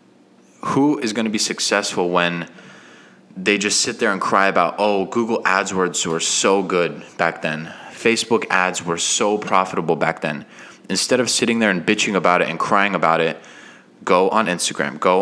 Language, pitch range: English, 85-105 Hz